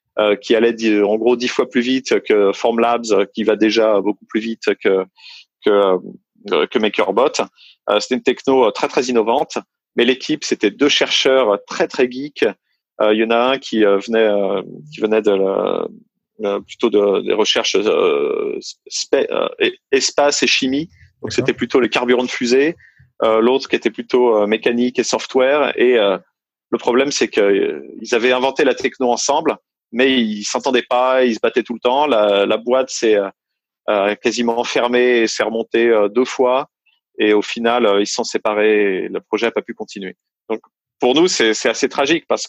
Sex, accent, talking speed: male, French, 190 wpm